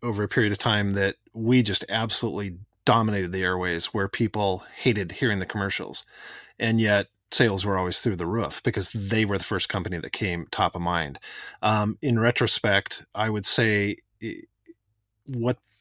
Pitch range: 100-120 Hz